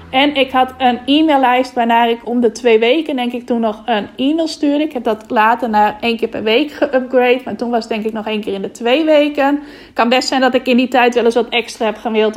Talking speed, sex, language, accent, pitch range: 270 wpm, female, Dutch, Dutch, 225-265 Hz